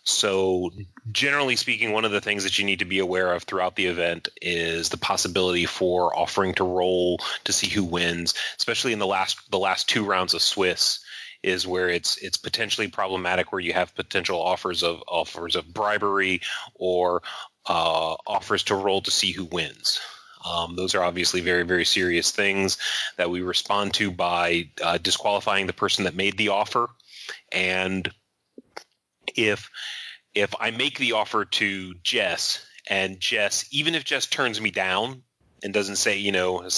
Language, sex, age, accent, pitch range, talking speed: English, male, 30-49, American, 90-100 Hz, 175 wpm